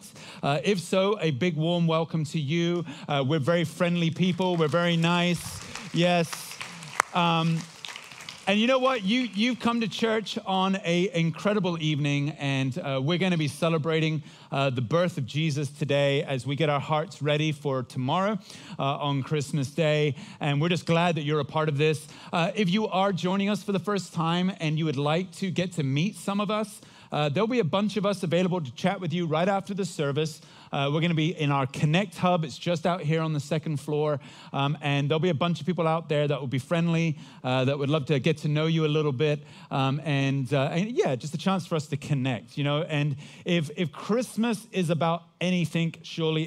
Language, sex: English, male